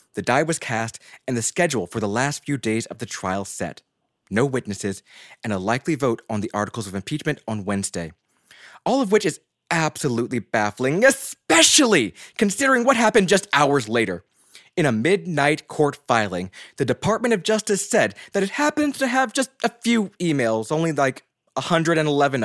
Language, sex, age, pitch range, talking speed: English, male, 20-39, 125-200 Hz, 170 wpm